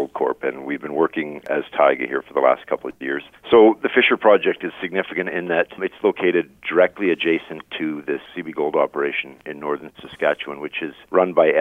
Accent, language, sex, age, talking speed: American, English, male, 50-69, 200 wpm